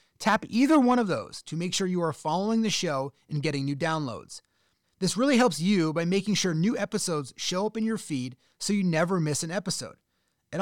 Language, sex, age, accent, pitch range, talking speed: English, male, 30-49, American, 160-220 Hz, 215 wpm